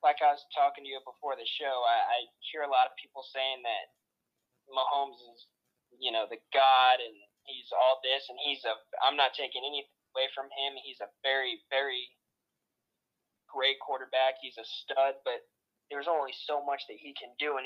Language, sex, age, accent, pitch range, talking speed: English, male, 20-39, American, 125-155 Hz, 195 wpm